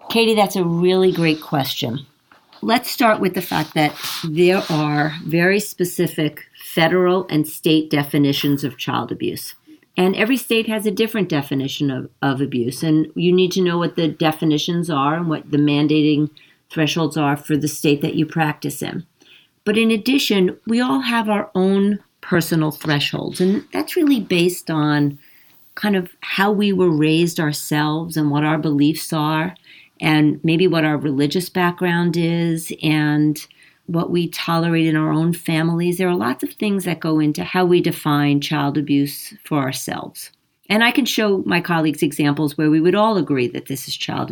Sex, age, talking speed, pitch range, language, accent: female, 50-69, 175 wpm, 150-185 Hz, English, American